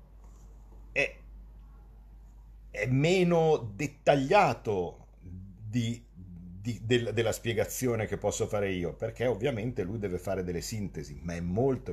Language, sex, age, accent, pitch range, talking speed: Italian, male, 50-69, native, 90-110 Hz, 115 wpm